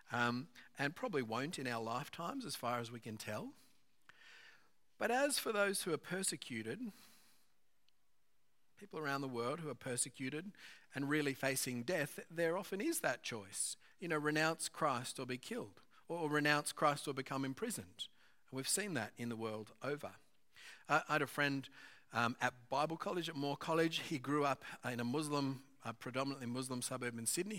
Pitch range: 120-155 Hz